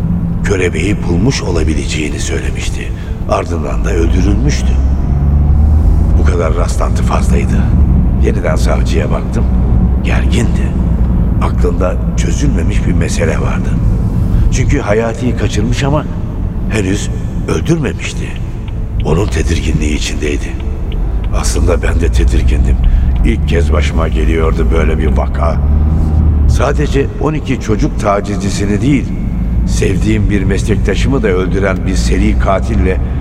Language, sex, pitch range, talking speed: Turkish, male, 65-95 Hz, 95 wpm